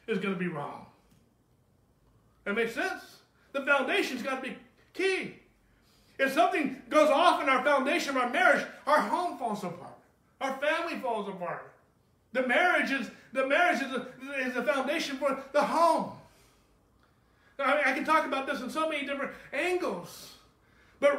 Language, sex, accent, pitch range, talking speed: English, male, American, 220-320 Hz, 145 wpm